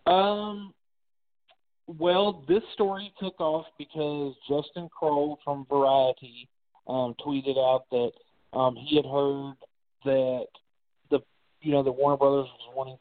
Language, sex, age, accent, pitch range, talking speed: English, male, 40-59, American, 125-150 Hz, 130 wpm